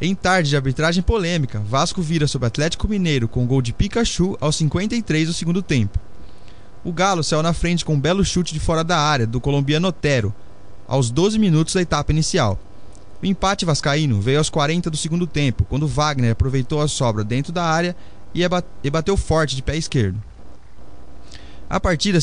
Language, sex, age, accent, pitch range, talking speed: Portuguese, male, 20-39, Brazilian, 125-175 Hz, 180 wpm